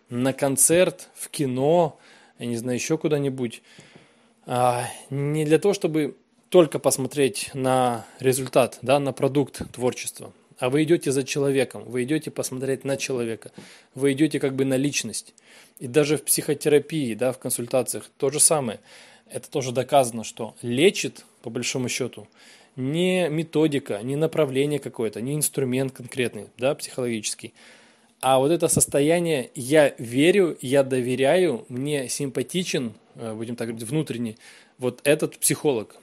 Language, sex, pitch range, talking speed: Russian, male, 125-150 Hz, 140 wpm